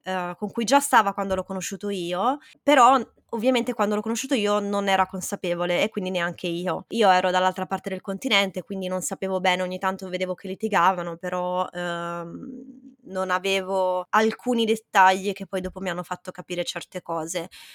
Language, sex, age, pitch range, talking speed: Italian, female, 20-39, 185-220 Hz, 170 wpm